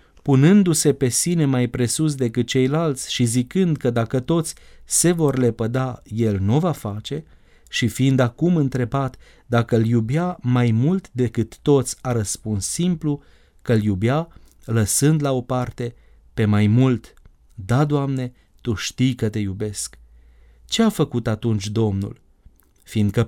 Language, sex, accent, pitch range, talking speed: Romanian, male, native, 110-145 Hz, 145 wpm